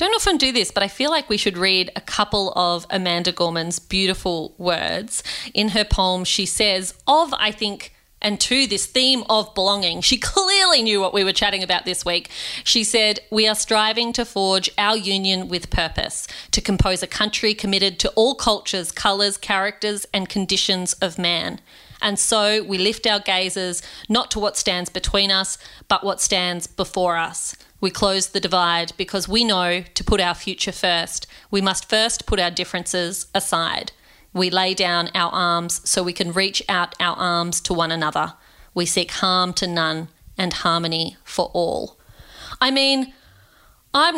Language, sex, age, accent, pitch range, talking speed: English, female, 30-49, Australian, 180-215 Hz, 175 wpm